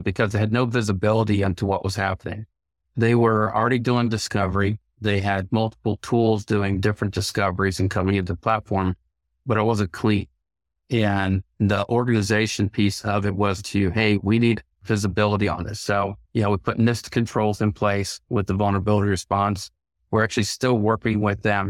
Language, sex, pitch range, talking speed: English, male, 100-115 Hz, 180 wpm